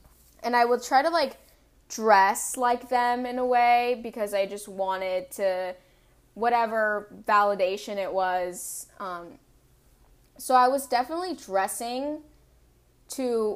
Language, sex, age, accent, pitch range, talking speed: English, female, 10-29, American, 195-245 Hz, 125 wpm